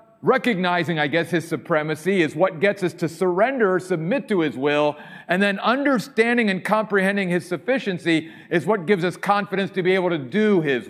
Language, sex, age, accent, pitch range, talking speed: English, male, 50-69, American, 165-220 Hz, 185 wpm